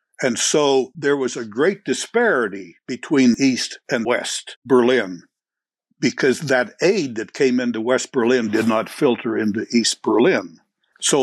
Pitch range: 115-150 Hz